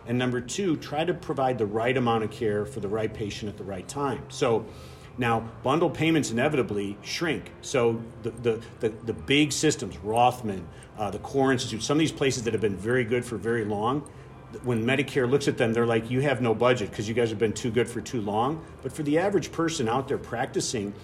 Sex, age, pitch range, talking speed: male, 50-69, 110-130 Hz, 215 wpm